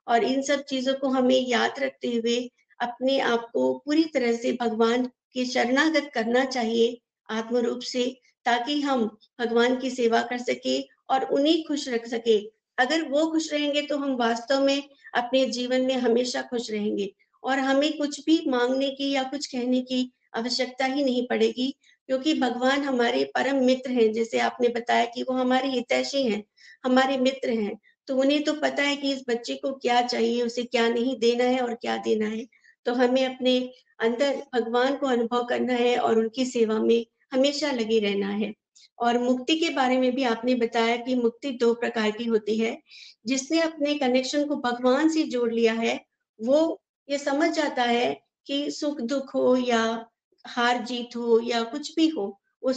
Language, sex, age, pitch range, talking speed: Hindi, female, 50-69, 235-275 Hz, 180 wpm